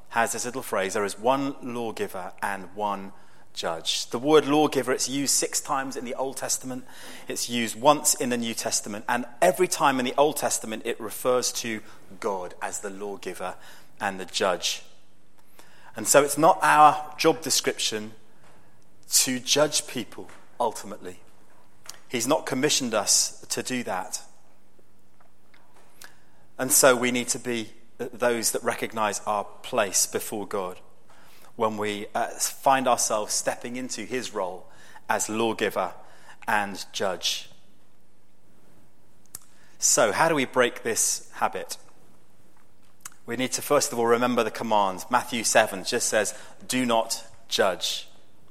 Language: English